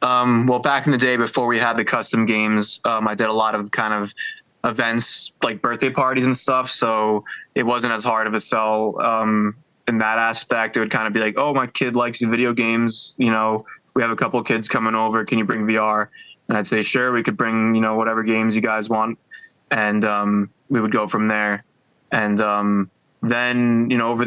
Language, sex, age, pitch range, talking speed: English, male, 20-39, 110-120 Hz, 225 wpm